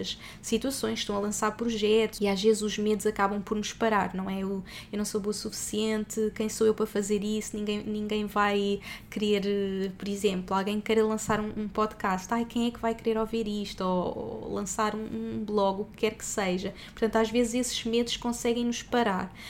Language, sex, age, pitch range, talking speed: Portuguese, female, 20-39, 210-240 Hz, 215 wpm